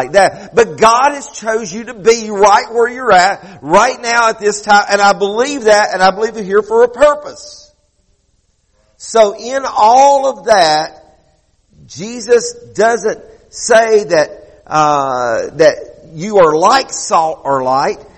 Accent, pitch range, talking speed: American, 160-230 Hz, 155 wpm